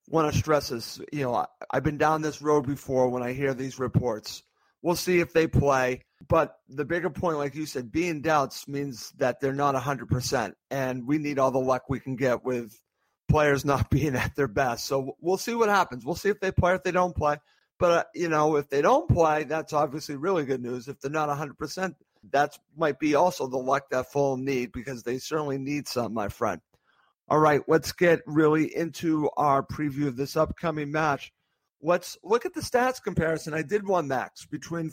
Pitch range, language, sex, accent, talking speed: 140-175 Hz, English, male, American, 215 wpm